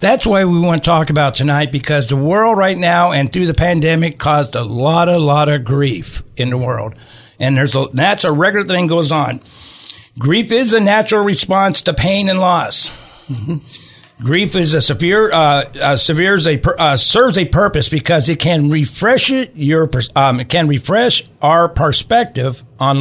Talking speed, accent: 180 wpm, American